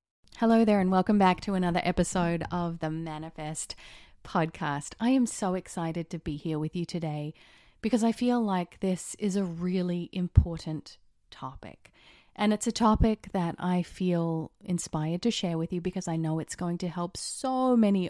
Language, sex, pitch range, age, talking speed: English, female, 155-190 Hz, 30-49, 175 wpm